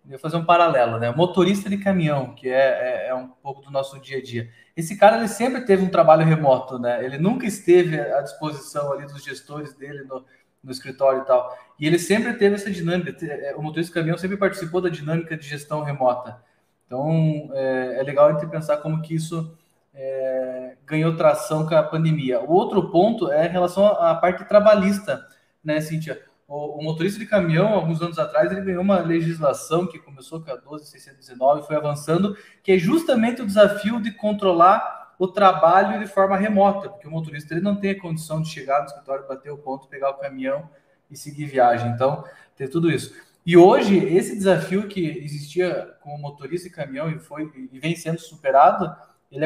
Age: 20-39